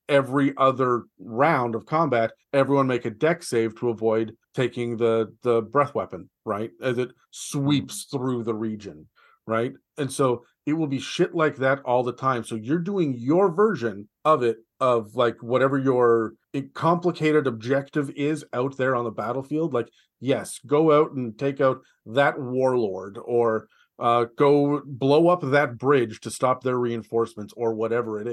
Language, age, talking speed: English, 40-59, 165 wpm